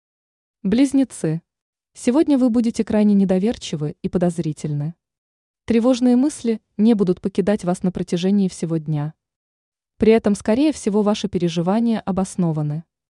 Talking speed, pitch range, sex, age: 115 wpm, 175-230 Hz, female, 20-39